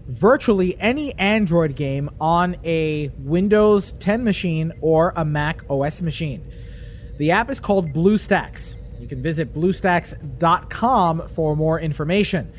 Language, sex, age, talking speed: English, male, 30-49, 125 wpm